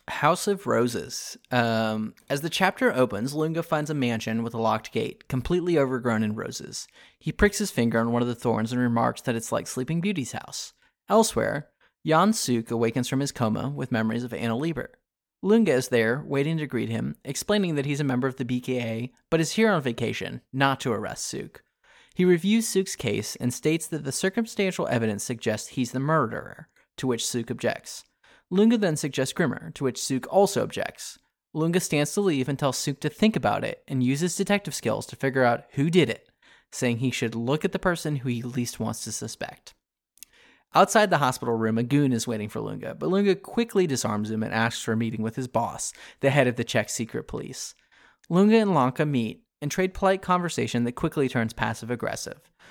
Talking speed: 200 wpm